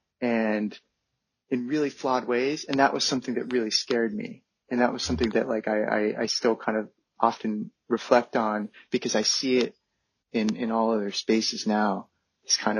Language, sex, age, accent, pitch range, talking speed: English, male, 30-49, American, 110-180 Hz, 190 wpm